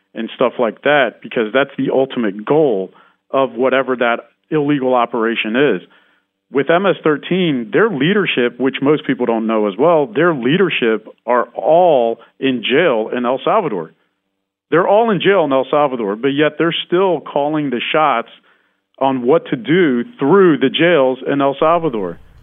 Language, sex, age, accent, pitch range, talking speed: English, male, 40-59, American, 125-155 Hz, 160 wpm